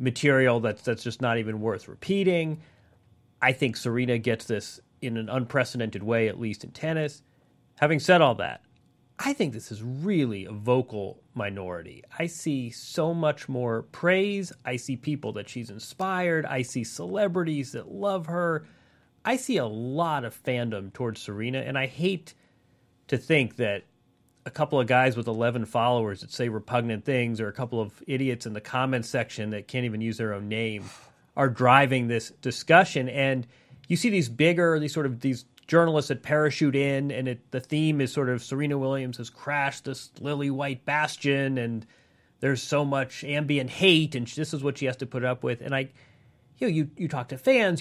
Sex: male